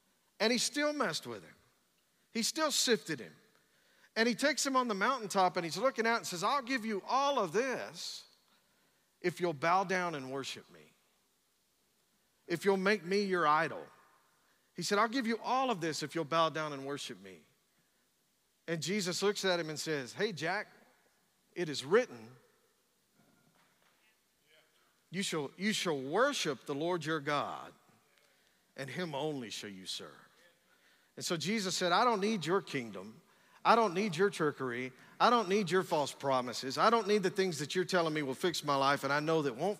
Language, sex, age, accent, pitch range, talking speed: English, male, 50-69, American, 150-220 Hz, 180 wpm